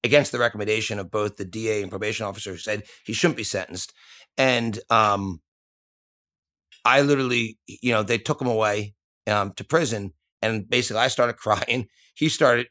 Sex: male